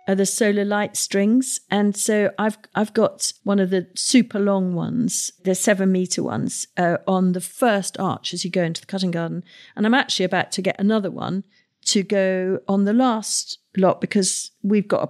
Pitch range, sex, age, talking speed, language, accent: 185-235 Hz, female, 50-69, 200 wpm, English, British